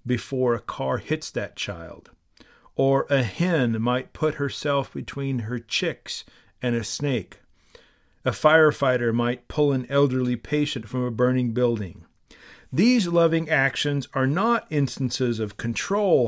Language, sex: English, male